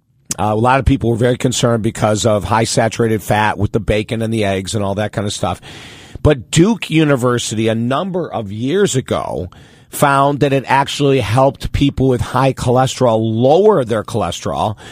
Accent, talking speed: American, 180 wpm